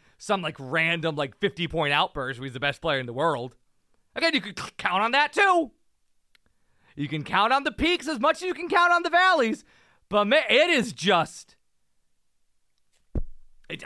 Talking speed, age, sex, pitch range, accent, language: 180 wpm, 30-49, male, 185-290 Hz, American, English